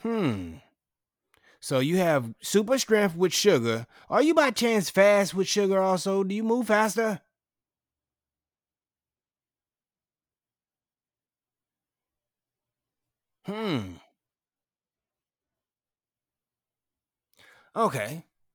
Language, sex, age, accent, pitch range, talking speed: English, male, 30-49, American, 135-200 Hz, 70 wpm